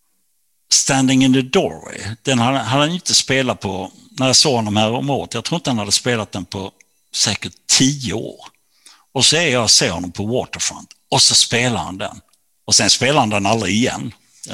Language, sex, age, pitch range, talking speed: Swedish, male, 60-79, 100-120 Hz, 200 wpm